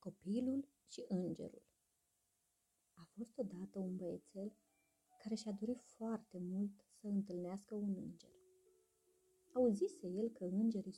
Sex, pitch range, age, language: female, 185-275 Hz, 30-49, Romanian